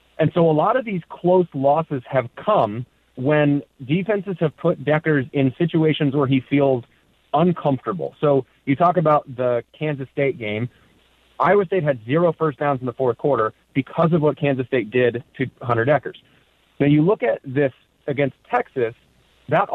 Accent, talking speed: American, 170 wpm